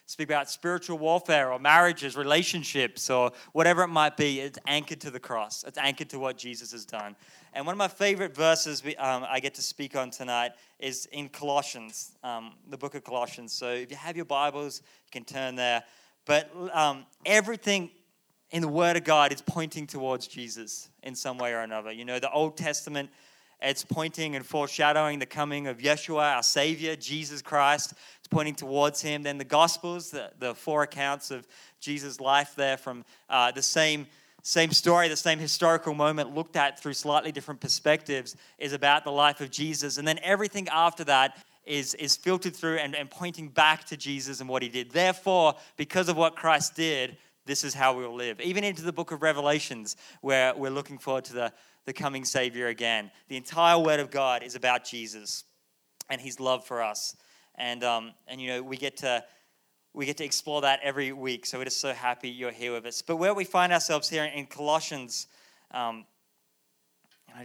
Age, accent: 20-39, Australian